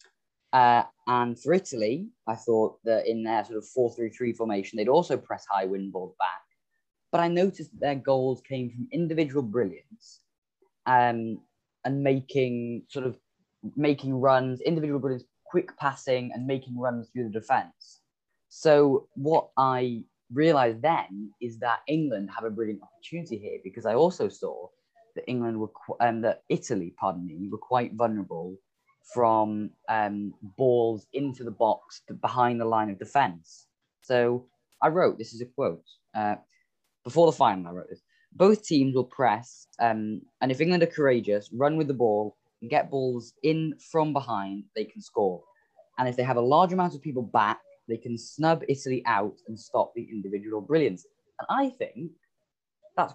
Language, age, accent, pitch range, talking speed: English, 10-29, British, 115-160 Hz, 170 wpm